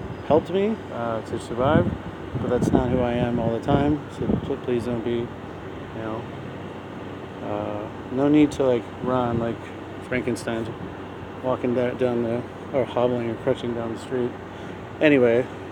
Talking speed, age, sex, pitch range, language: 150 wpm, 40-59, male, 110-135 Hz, English